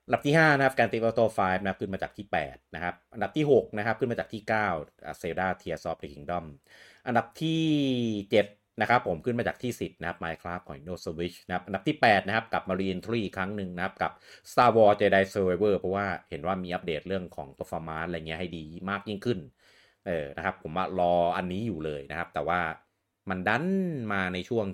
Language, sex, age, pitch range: Thai, male, 30-49, 85-110 Hz